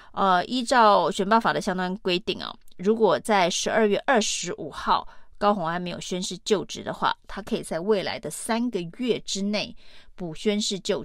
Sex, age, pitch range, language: female, 30-49, 185-225 Hz, Chinese